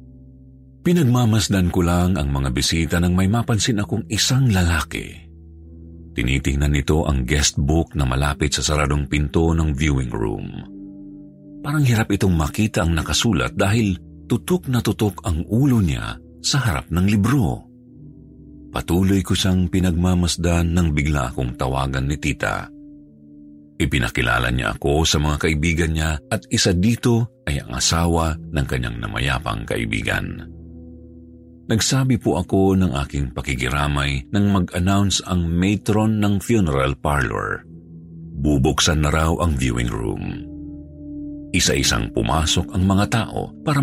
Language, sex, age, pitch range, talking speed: Filipino, male, 50-69, 75-100 Hz, 125 wpm